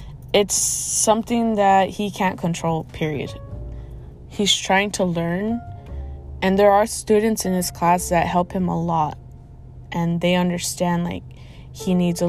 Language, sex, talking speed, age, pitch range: English, female, 145 wpm, 20-39, 170-195 Hz